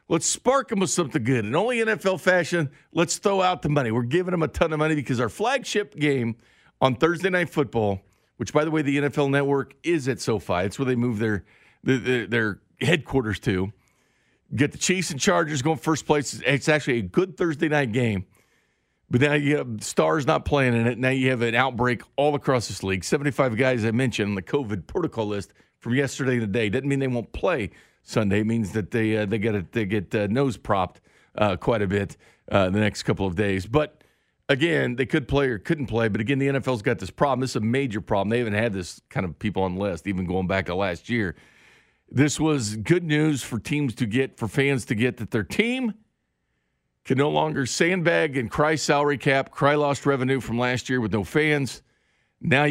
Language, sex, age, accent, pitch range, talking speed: English, male, 50-69, American, 110-150 Hz, 220 wpm